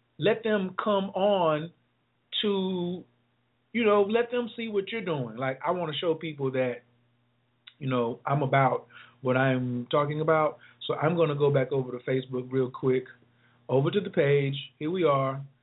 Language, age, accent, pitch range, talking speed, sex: English, 40-59, American, 130-155 Hz, 170 wpm, male